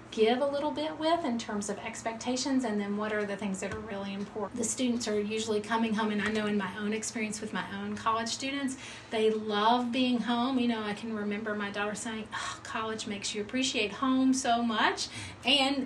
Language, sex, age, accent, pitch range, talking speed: English, female, 40-59, American, 205-245 Hz, 215 wpm